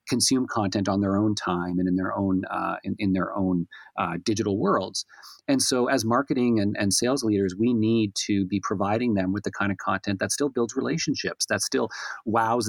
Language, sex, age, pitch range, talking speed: English, male, 30-49, 90-110 Hz, 210 wpm